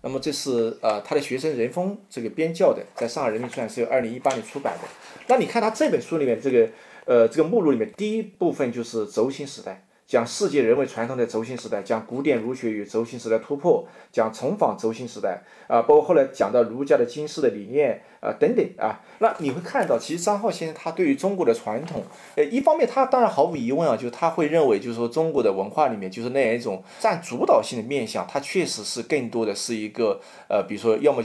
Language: Chinese